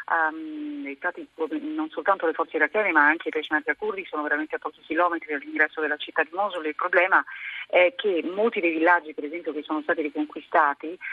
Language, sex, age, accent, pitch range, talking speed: Italian, female, 40-59, native, 150-175 Hz, 190 wpm